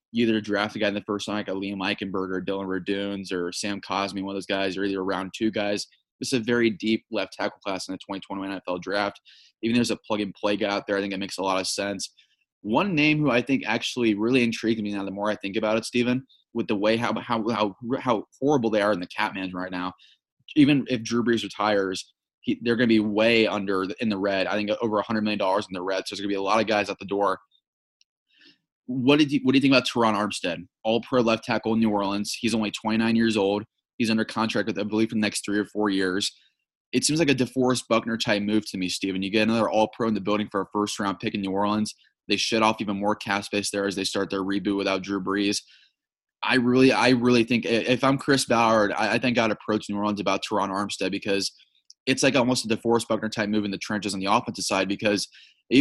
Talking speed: 255 wpm